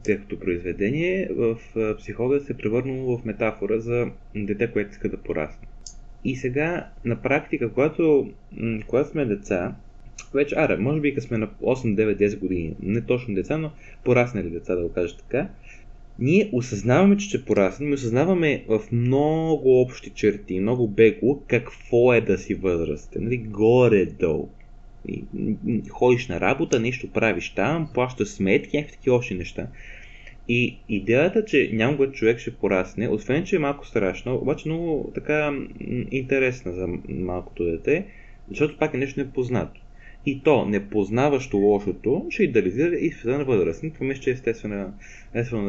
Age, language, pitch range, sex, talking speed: 20-39, Bulgarian, 100-135 Hz, male, 155 wpm